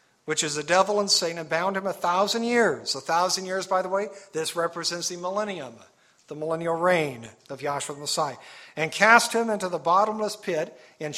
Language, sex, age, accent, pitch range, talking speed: English, male, 50-69, American, 155-200 Hz, 200 wpm